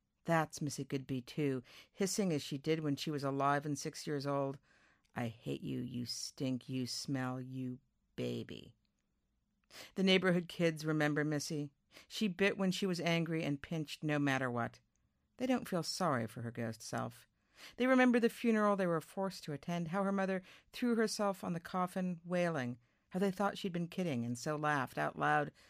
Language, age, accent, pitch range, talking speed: English, 50-69, American, 135-180 Hz, 180 wpm